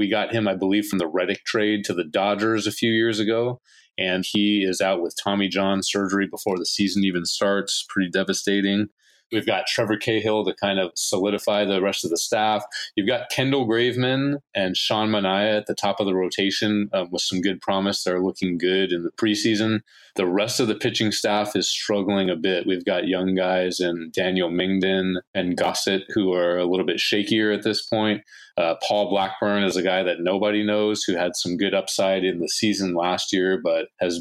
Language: English